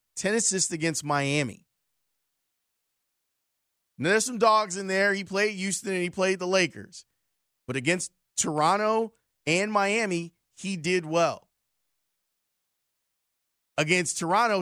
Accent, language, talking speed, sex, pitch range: American, English, 110 wpm, male, 145-190 Hz